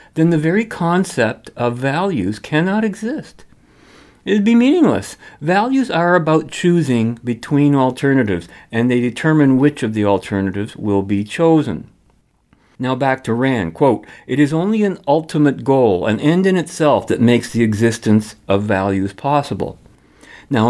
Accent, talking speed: American, 145 wpm